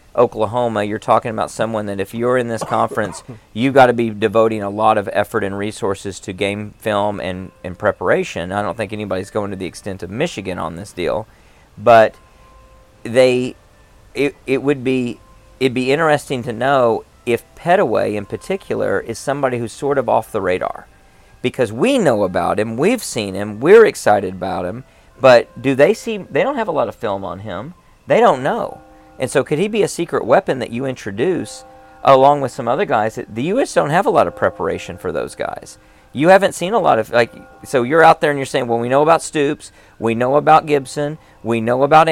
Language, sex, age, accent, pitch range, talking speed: English, male, 40-59, American, 105-135 Hz, 210 wpm